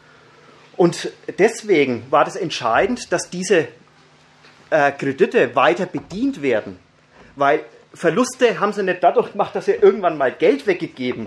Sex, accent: male, German